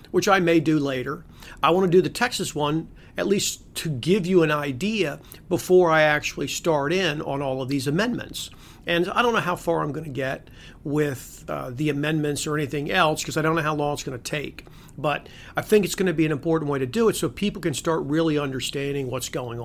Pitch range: 145-170 Hz